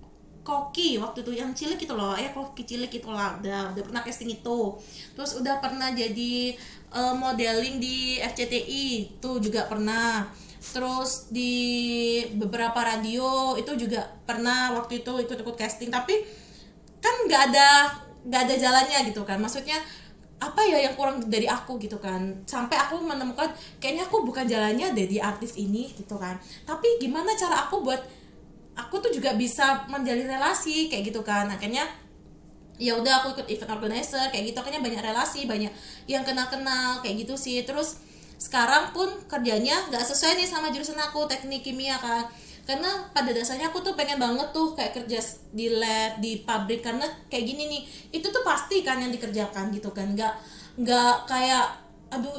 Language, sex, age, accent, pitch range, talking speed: Indonesian, female, 20-39, native, 230-280 Hz, 165 wpm